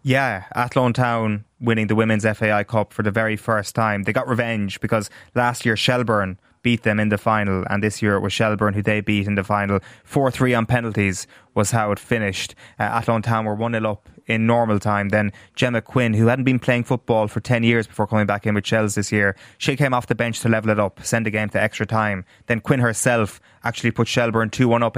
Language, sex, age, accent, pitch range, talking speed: English, male, 20-39, Irish, 100-115 Hz, 230 wpm